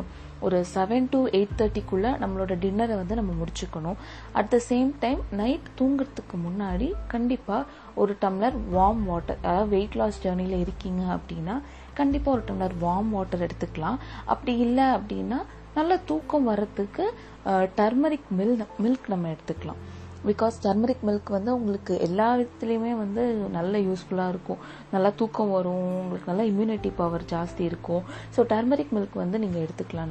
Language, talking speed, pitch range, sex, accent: Tamil, 110 wpm, 185-240 Hz, female, native